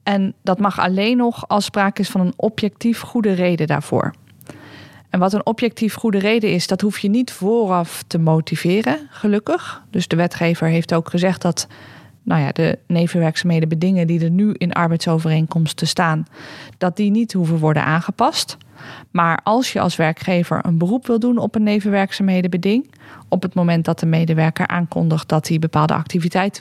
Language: Dutch